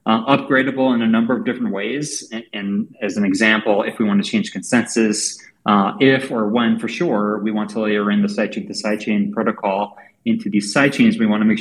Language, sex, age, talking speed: English, male, 30-49, 215 wpm